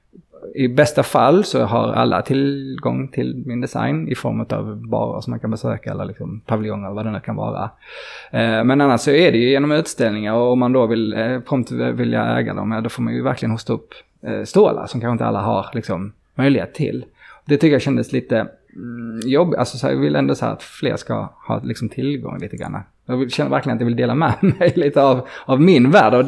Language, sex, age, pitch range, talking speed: Swedish, male, 20-39, 110-140 Hz, 215 wpm